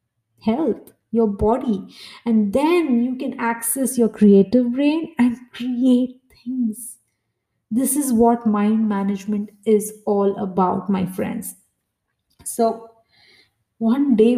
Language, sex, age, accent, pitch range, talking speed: English, female, 20-39, Indian, 200-240 Hz, 115 wpm